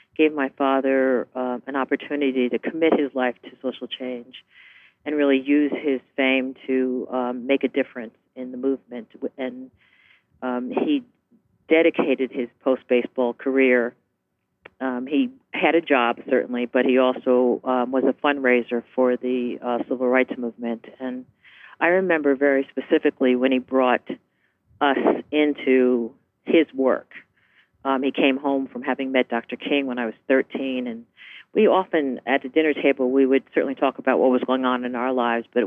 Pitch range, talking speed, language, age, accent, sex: 125-140 Hz, 165 wpm, English, 50-69, American, female